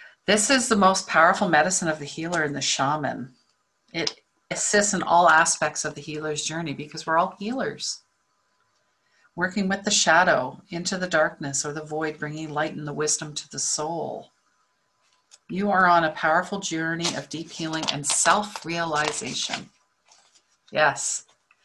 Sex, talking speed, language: female, 150 wpm, English